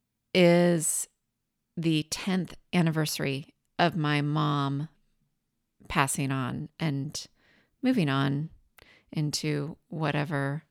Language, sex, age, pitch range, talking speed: English, female, 30-49, 155-190 Hz, 80 wpm